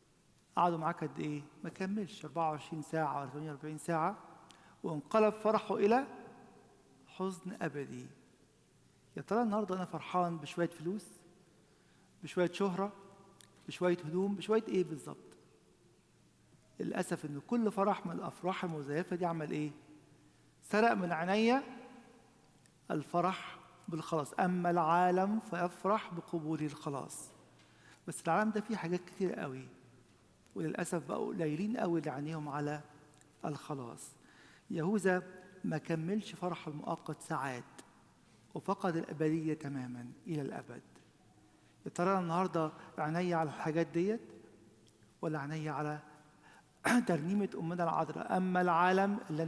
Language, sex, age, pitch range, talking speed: English, male, 50-69, 150-185 Hz, 110 wpm